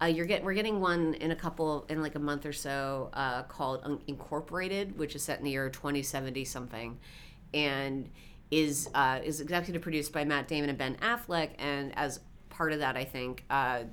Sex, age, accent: female, 30-49, American